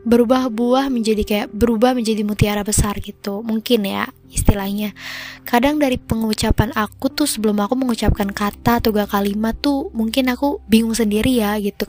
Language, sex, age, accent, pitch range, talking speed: Indonesian, female, 20-39, native, 205-240 Hz, 150 wpm